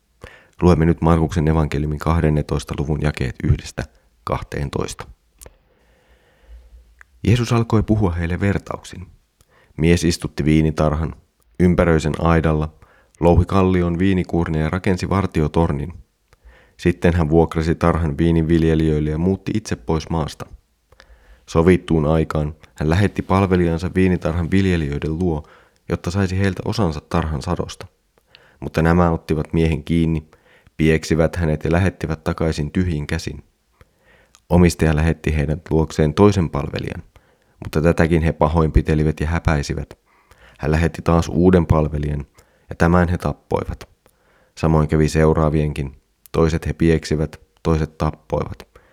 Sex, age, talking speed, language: male, 30-49, 110 wpm, Finnish